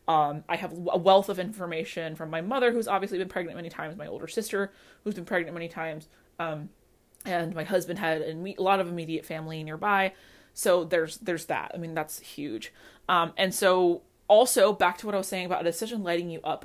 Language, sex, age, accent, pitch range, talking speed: English, female, 20-39, American, 165-200 Hz, 215 wpm